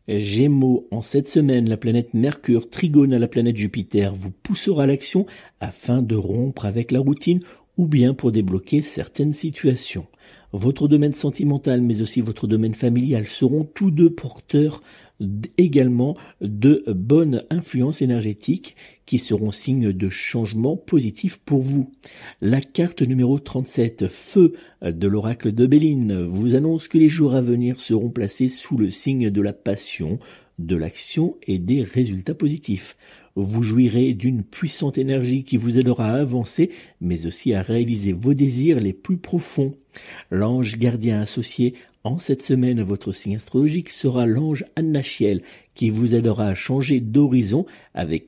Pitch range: 105-140 Hz